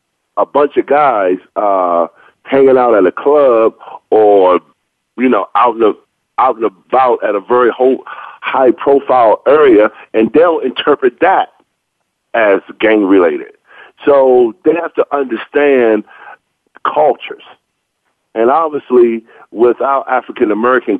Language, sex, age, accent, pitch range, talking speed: English, male, 40-59, American, 110-175 Hz, 110 wpm